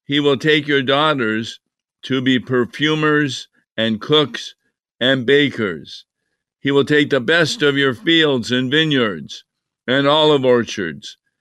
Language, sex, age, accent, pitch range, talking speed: English, male, 50-69, American, 120-145 Hz, 130 wpm